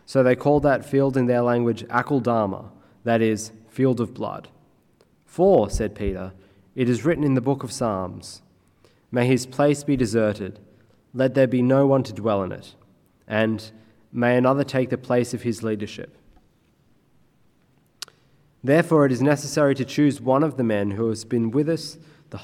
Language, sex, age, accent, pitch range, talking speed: English, male, 20-39, Australian, 110-135 Hz, 170 wpm